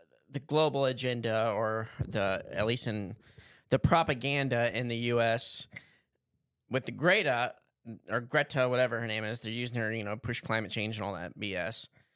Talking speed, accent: 170 wpm, American